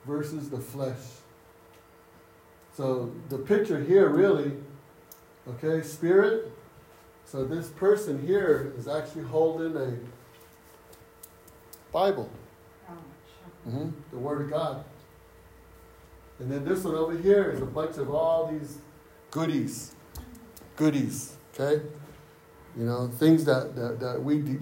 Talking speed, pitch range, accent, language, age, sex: 115 wpm, 120-155 Hz, American, English, 60-79, male